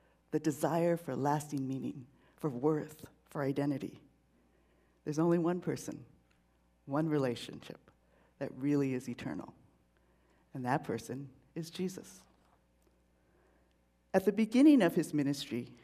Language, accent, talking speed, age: English, American, 115 wpm, 60-79